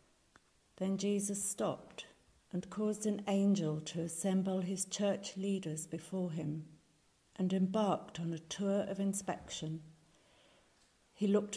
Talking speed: 120 wpm